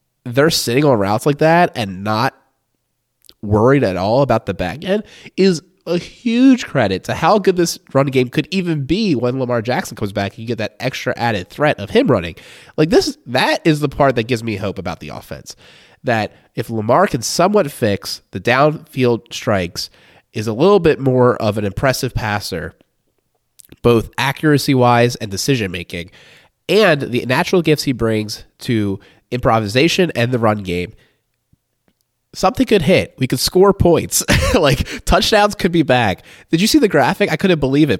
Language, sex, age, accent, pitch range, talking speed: English, male, 20-39, American, 110-155 Hz, 175 wpm